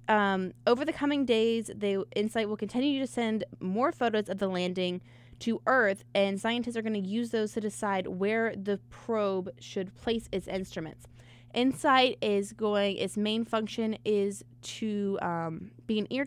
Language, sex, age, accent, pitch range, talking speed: English, female, 20-39, American, 165-215 Hz, 170 wpm